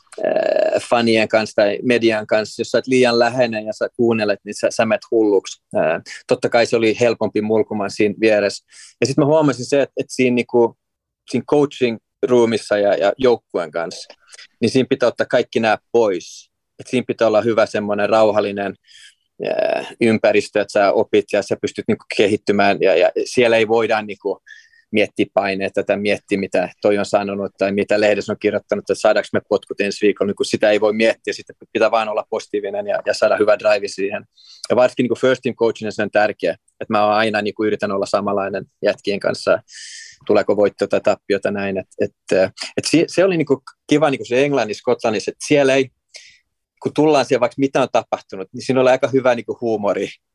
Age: 30-49